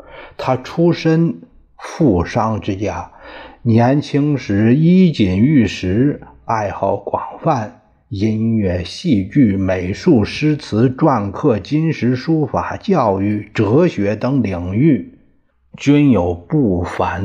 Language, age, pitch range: Chinese, 60-79, 90-135 Hz